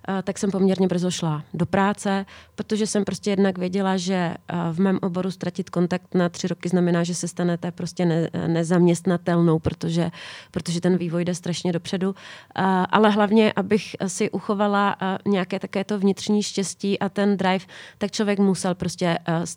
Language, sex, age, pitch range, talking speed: Czech, female, 30-49, 175-200 Hz, 155 wpm